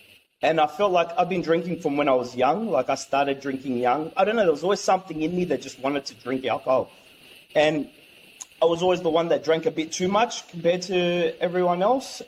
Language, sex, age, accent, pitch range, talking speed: English, male, 30-49, Australian, 130-175 Hz, 235 wpm